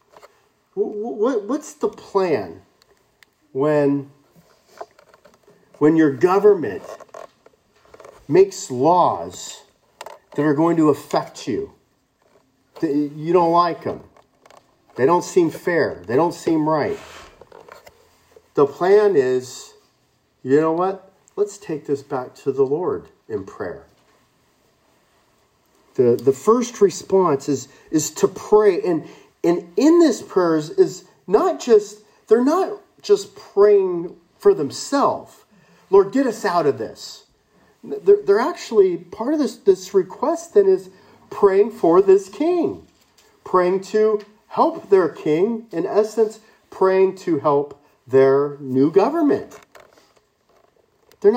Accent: American